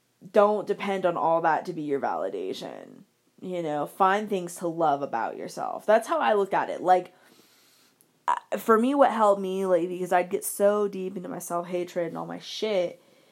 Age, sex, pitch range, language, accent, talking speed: 20-39, female, 175-210 Hz, English, American, 190 wpm